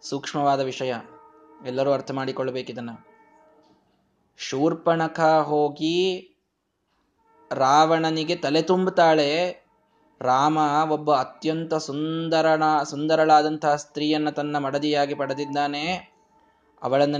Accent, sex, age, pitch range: native, male, 20-39, 150-175 Hz